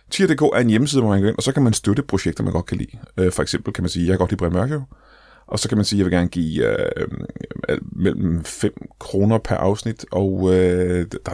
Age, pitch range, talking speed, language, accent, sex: 30-49, 95-120 Hz, 265 wpm, Danish, native, male